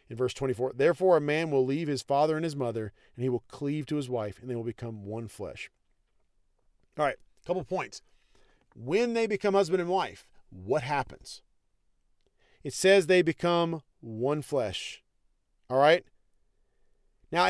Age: 40-59